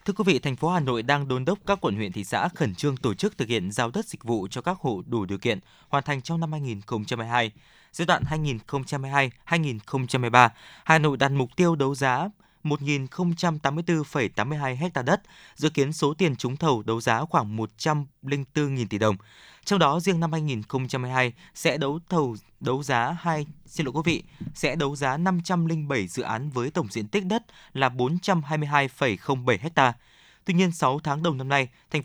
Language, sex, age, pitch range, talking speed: Vietnamese, male, 20-39, 125-165 Hz, 185 wpm